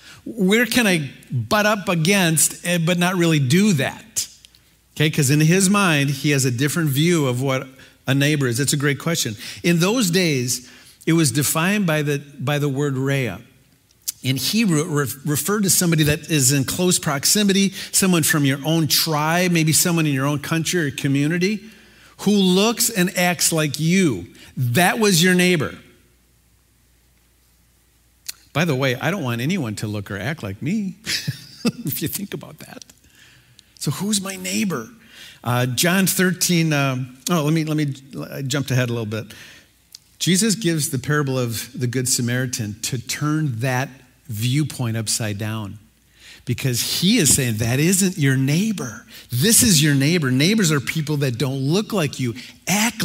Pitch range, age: 130-180 Hz, 50-69